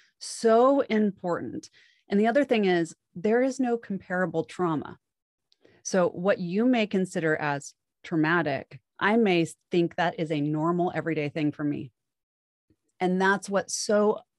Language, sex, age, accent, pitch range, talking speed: English, female, 30-49, American, 160-210 Hz, 140 wpm